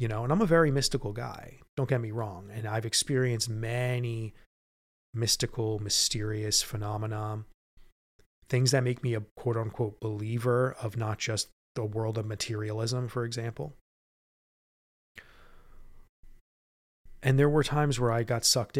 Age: 30-49